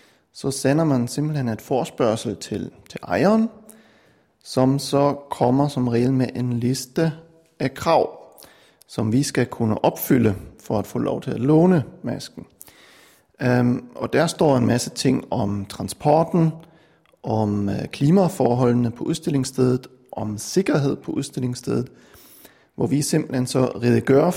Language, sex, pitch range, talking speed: Danish, male, 120-160 Hz, 130 wpm